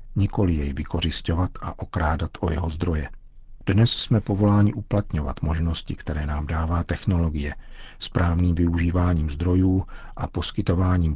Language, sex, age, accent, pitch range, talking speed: Czech, male, 50-69, native, 85-100 Hz, 120 wpm